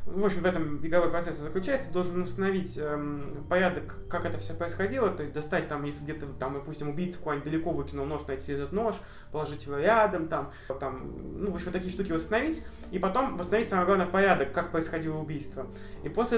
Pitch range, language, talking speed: 150-185 Hz, Russian, 200 wpm